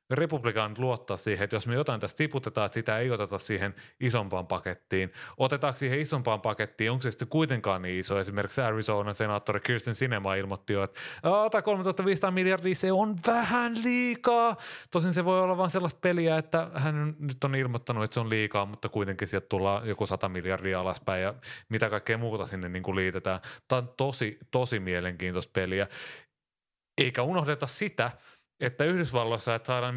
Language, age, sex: Finnish, 30-49, male